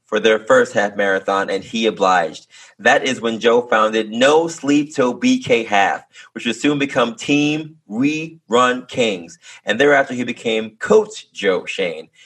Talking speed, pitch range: 160 wpm, 110-150 Hz